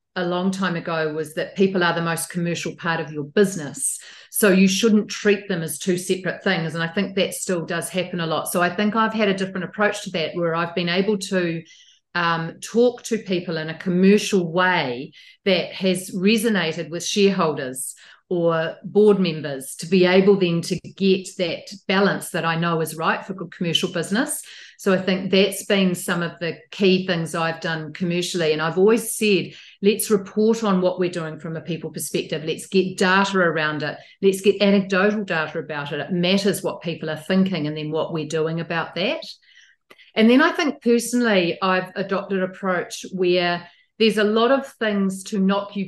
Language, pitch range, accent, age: English, 170-200 Hz, Australian, 40-59